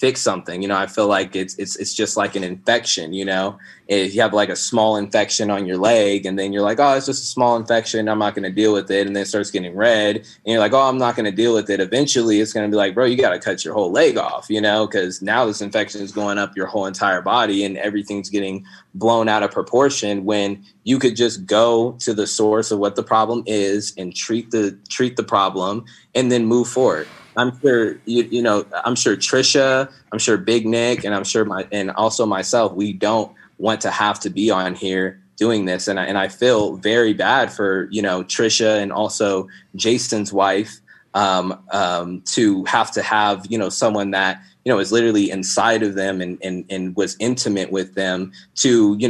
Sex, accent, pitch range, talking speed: male, American, 95-115 Hz, 230 wpm